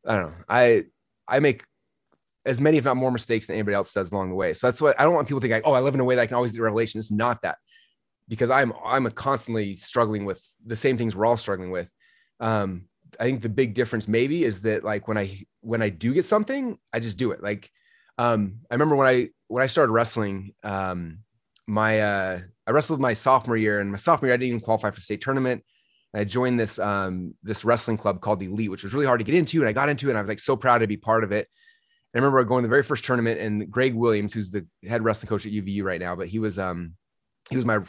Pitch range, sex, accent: 105-135 Hz, male, American